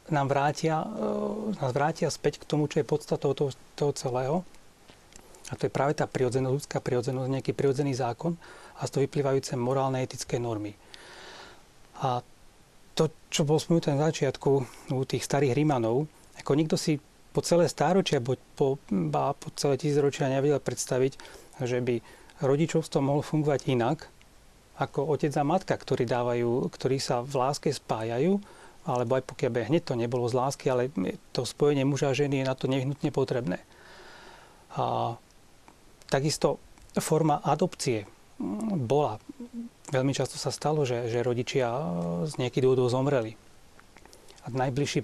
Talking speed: 145 wpm